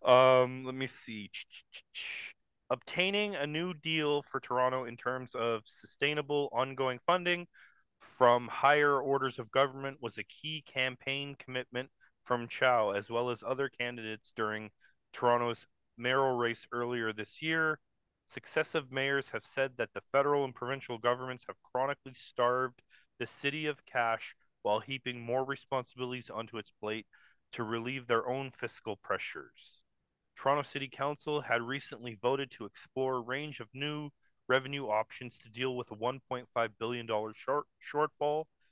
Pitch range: 120-140 Hz